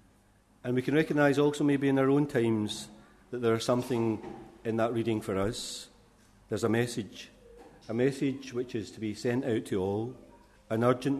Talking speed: 180 wpm